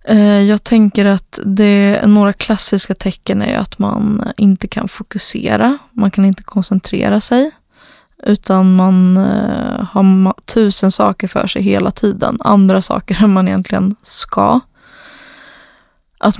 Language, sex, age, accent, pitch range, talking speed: Swedish, female, 20-39, native, 195-215 Hz, 125 wpm